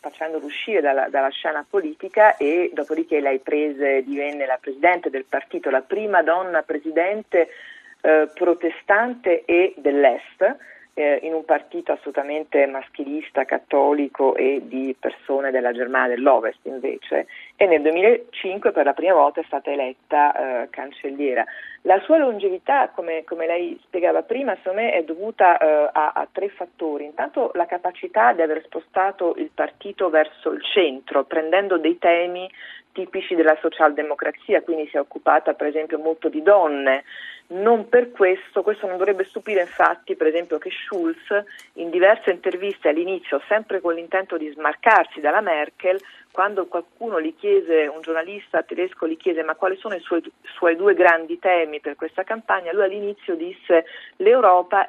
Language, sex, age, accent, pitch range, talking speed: Italian, female, 40-59, native, 150-195 Hz, 150 wpm